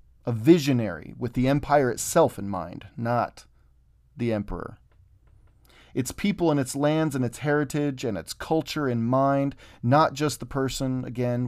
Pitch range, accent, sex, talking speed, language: 110-145 Hz, American, male, 150 wpm, English